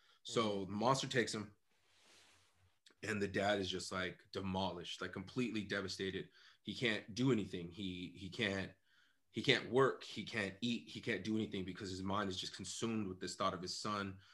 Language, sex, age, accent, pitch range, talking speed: English, male, 30-49, American, 95-110 Hz, 185 wpm